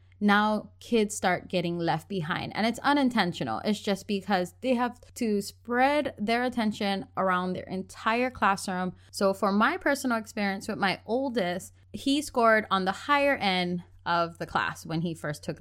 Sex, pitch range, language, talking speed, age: female, 185-245 Hz, English, 165 wpm, 20-39